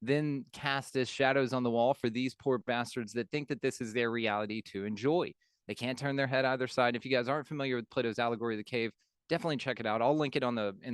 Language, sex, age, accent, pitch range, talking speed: English, male, 20-39, American, 115-140 Hz, 265 wpm